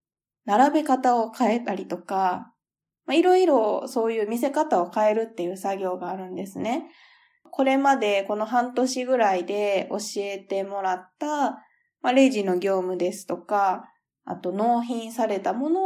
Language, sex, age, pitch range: Japanese, female, 20-39, 195-275 Hz